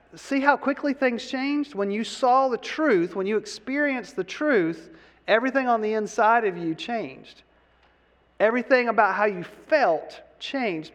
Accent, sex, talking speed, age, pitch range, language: American, male, 155 wpm, 40-59, 165-235 Hz, English